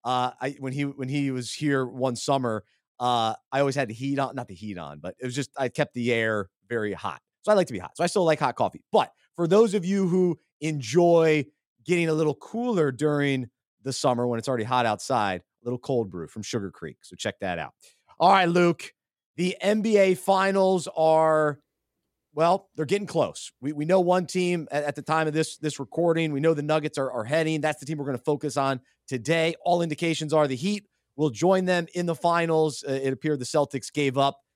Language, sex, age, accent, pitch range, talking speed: English, male, 30-49, American, 130-170 Hz, 225 wpm